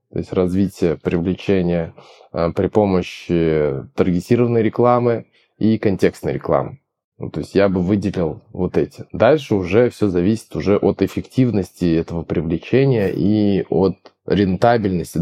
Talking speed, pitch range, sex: 125 wpm, 90-110 Hz, male